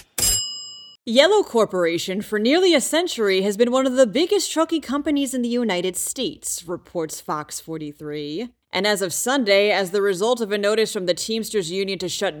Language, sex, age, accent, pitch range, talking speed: English, female, 30-49, American, 175-260 Hz, 180 wpm